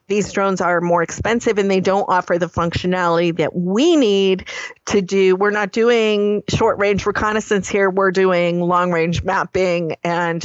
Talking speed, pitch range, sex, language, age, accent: 155 wpm, 180-230 Hz, female, English, 40-59, American